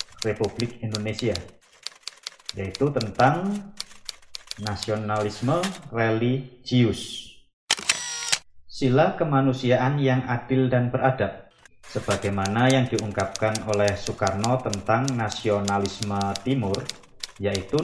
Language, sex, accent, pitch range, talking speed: Indonesian, male, native, 100-130 Hz, 70 wpm